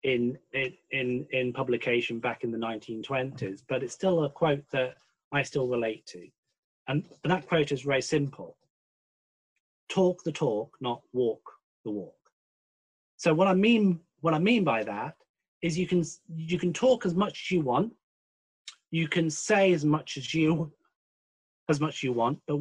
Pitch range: 130-170 Hz